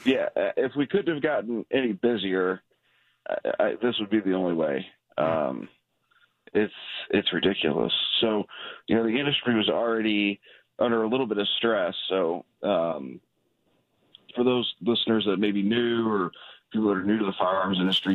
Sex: male